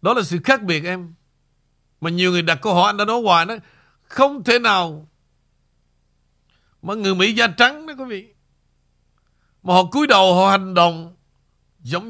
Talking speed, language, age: 180 wpm, Vietnamese, 60-79